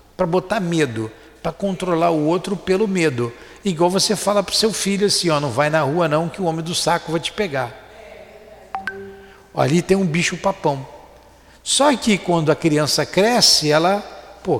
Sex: male